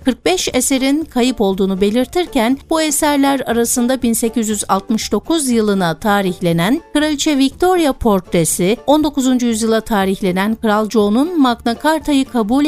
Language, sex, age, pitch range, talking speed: Turkish, female, 60-79, 195-265 Hz, 105 wpm